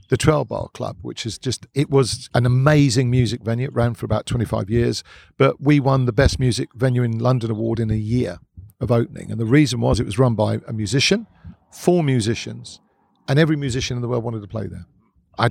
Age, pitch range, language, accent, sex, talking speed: 50-69, 110-140 Hz, English, British, male, 220 wpm